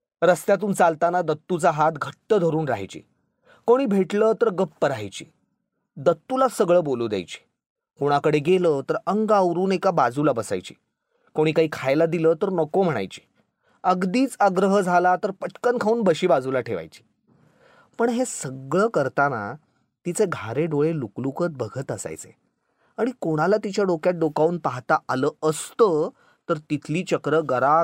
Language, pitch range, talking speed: Marathi, 150-210 Hz, 130 wpm